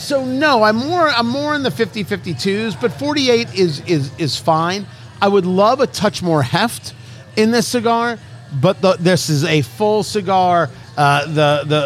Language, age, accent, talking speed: English, 40-59, American, 180 wpm